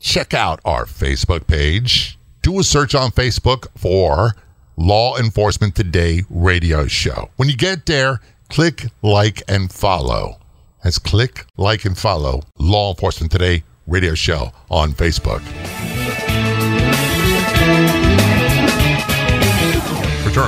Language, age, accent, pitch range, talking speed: English, 50-69, American, 90-120 Hz, 110 wpm